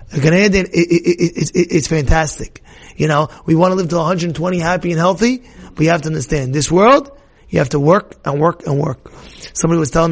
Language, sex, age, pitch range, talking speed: English, male, 30-49, 155-205 Hz, 225 wpm